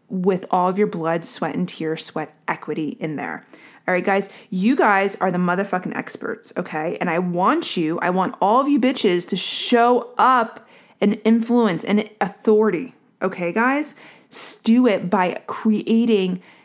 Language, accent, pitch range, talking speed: English, American, 180-230 Hz, 160 wpm